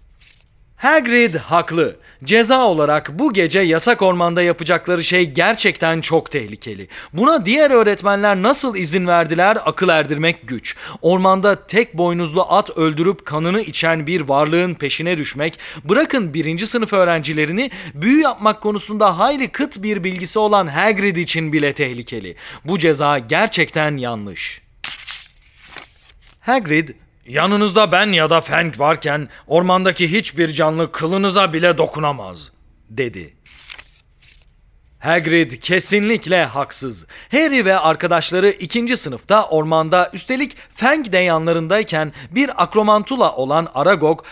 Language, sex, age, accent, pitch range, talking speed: Turkish, male, 40-59, native, 155-205 Hz, 115 wpm